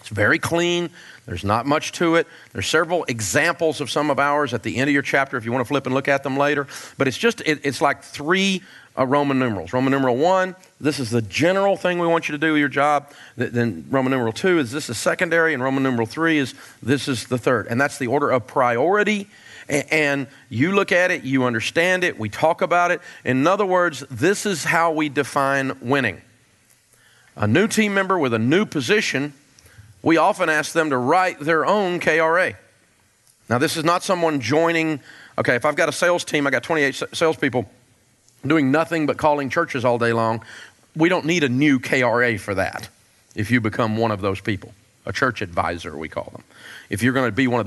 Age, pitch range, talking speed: 40-59, 120-165 Hz, 210 wpm